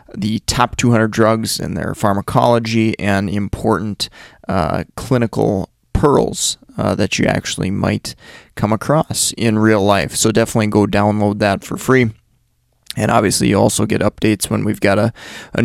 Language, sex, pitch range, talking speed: English, male, 110-125 Hz, 155 wpm